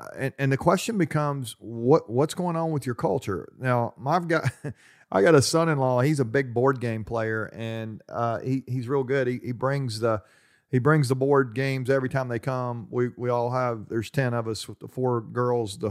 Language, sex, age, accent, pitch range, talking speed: English, male, 40-59, American, 115-135 Hz, 215 wpm